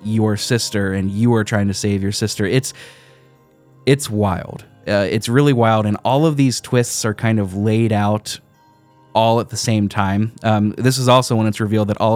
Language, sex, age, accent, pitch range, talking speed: English, male, 20-39, American, 100-125 Hz, 200 wpm